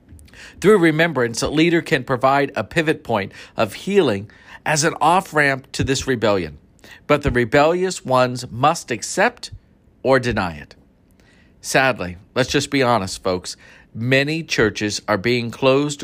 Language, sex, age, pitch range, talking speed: English, male, 50-69, 100-135 Hz, 140 wpm